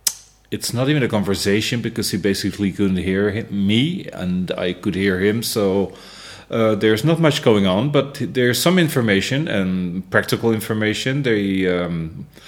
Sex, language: male, English